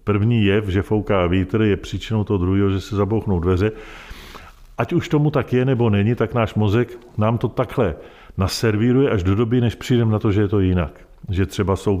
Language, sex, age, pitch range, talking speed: Czech, male, 50-69, 95-110 Hz, 205 wpm